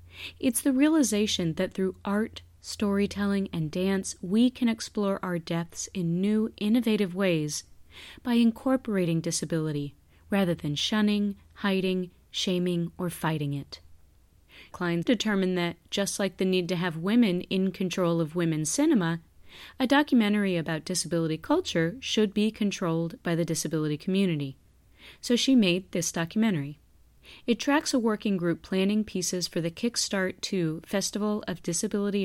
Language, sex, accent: English, female, American